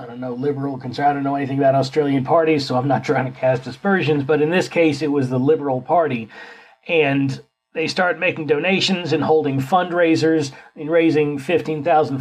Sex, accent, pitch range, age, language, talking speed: male, American, 140-170 Hz, 40-59, English, 190 wpm